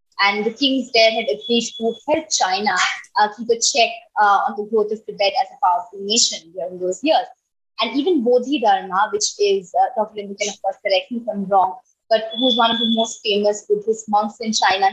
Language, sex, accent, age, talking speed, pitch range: English, female, Indian, 20-39, 210 wpm, 205-260 Hz